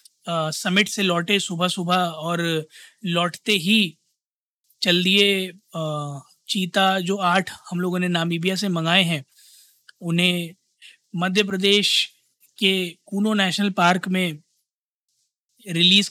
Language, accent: Hindi, native